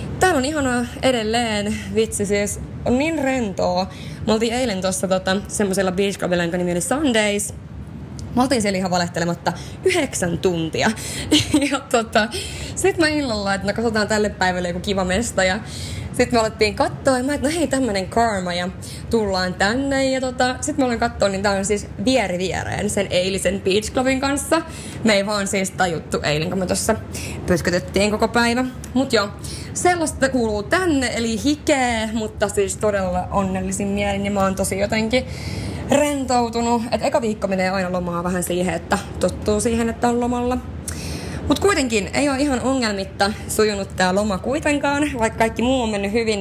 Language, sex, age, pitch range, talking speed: Finnish, female, 20-39, 190-245 Hz, 165 wpm